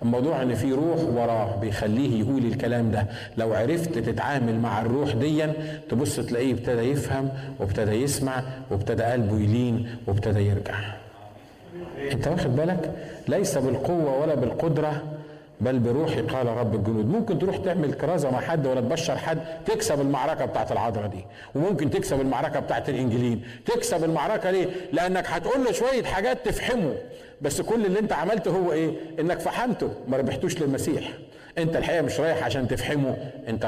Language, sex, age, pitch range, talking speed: Arabic, male, 50-69, 115-165 Hz, 150 wpm